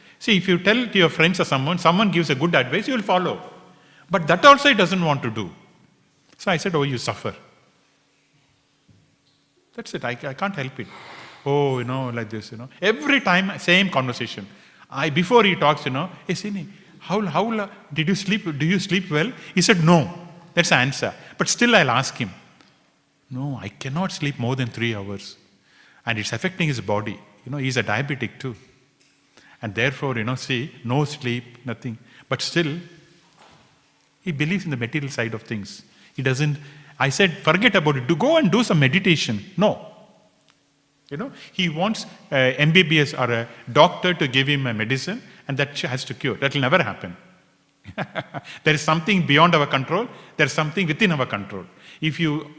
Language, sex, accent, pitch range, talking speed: English, male, Indian, 130-180 Hz, 190 wpm